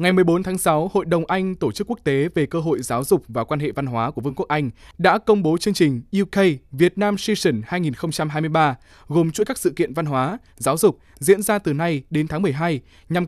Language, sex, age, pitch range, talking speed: Vietnamese, male, 20-39, 135-195 Hz, 225 wpm